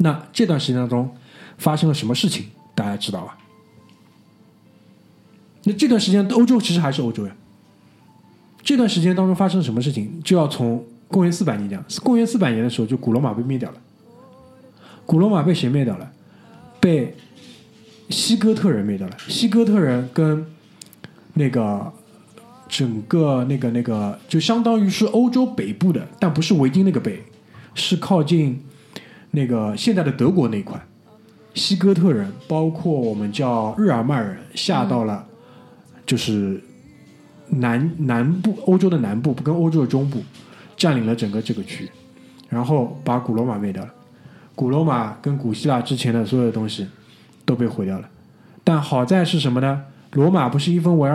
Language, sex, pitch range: Chinese, male, 120-185 Hz